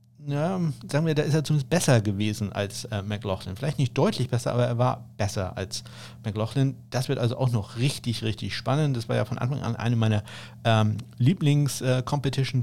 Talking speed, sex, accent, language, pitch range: 195 wpm, male, German, German, 115-135 Hz